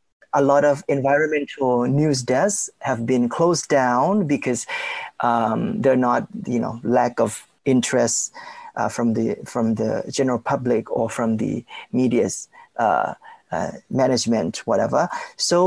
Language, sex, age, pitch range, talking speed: English, male, 30-49, 125-170 Hz, 135 wpm